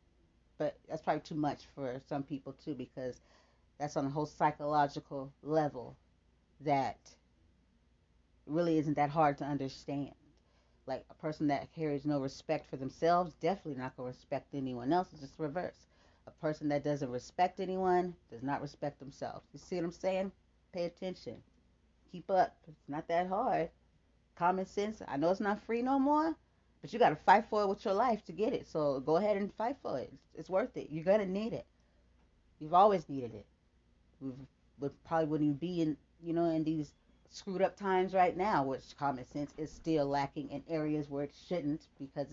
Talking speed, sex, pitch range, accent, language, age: 190 wpm, female, 130-185 Hz, American, English, 40-59